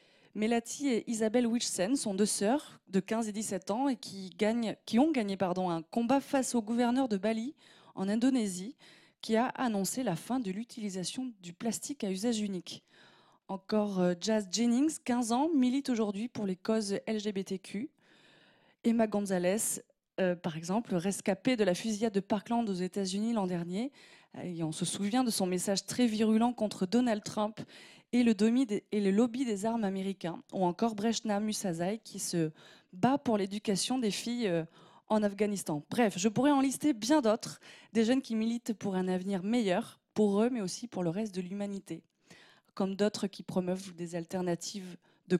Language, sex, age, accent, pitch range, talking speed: French, female, 20-39, French, 185-235 Hz, 170 wpm